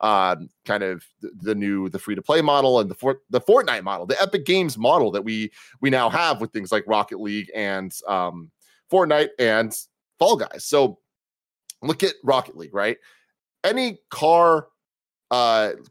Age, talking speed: 30-49, 170 wpm